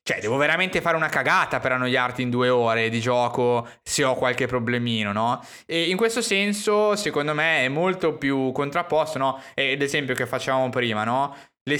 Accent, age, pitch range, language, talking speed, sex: native, 20-39, 125-160 Hz, Italian, 185 wpm, male